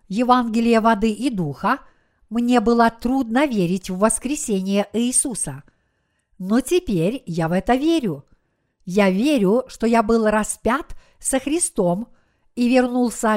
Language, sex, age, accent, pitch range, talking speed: Russian, female, 50-69, native, 195-250 Hz, 120 wpm